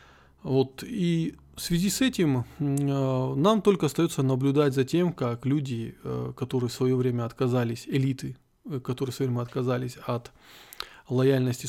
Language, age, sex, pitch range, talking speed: Russian, 20-39, male, 120-145 Hz, 140 wpm